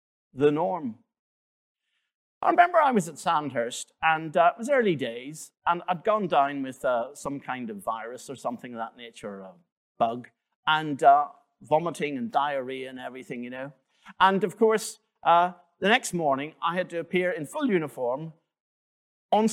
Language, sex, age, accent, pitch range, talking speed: English, male, 50-69, British, 150-220 Hz, 170 wpm